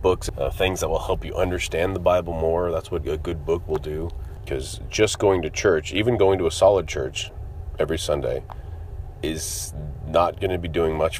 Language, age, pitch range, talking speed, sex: English, 30-49, 80-95 Hz, 195 wpm, male